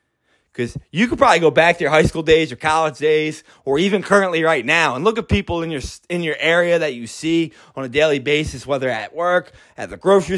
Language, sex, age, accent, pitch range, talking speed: English, male, 20-39, American, 130-170 Hz, 230 wpm